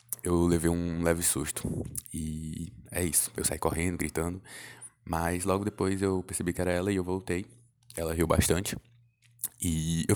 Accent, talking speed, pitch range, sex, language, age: Brazilian, 165 wpm, 80-100 Hz, male, Portuguese, 20-39